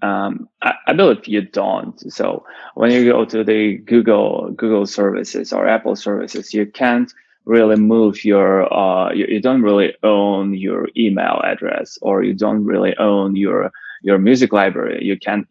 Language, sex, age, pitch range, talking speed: English, male, 20-39, 100-120 Hz, 165 wpm